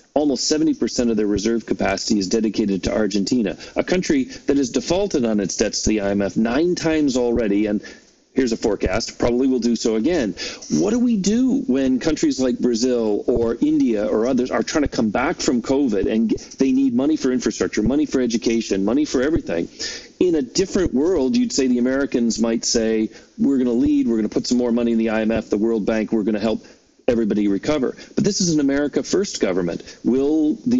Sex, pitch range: male, 115-160 Hz